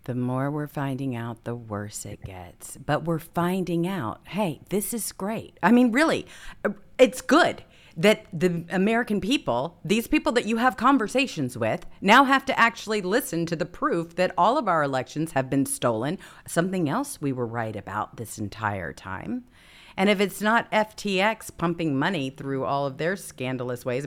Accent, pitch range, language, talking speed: American, 135-210 Hz, English, 175 wpm